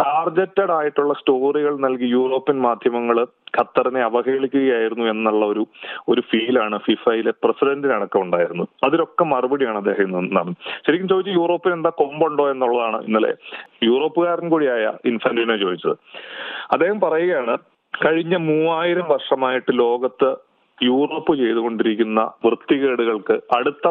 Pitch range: 115-150 Hz